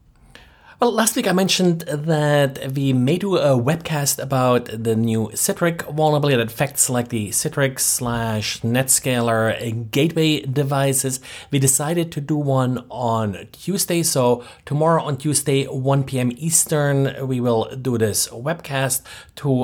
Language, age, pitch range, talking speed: English, 30-49, 120-150 Hz, 140 wpm